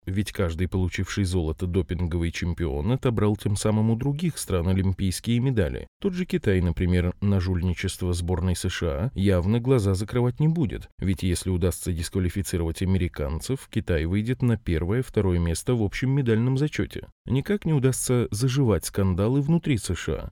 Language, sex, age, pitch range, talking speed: Russian, male, 20-39, 90-125 Hz, 140 wpm